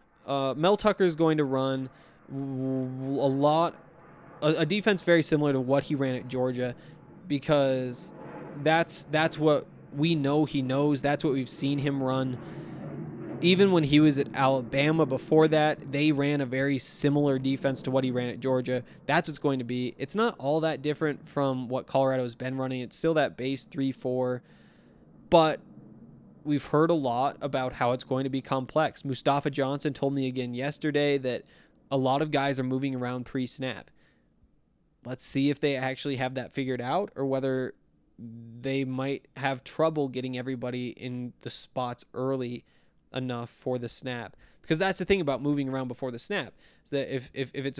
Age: 20-39